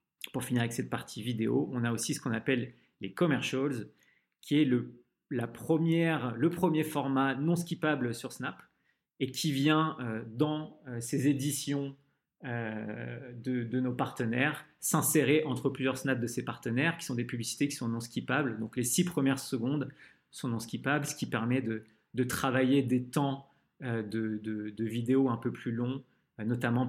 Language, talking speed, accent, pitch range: French, 170 wpm, French, 120-155 Hz